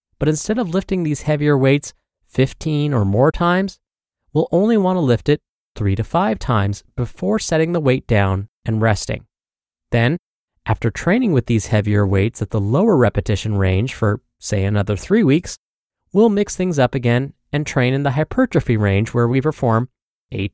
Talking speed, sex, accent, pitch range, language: 175 wpm, male, American, 110-170 Hz, English